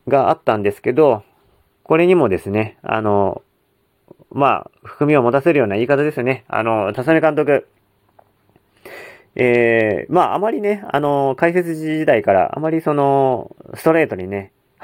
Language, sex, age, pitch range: Japanese, male, 40-59, 120-165 Hz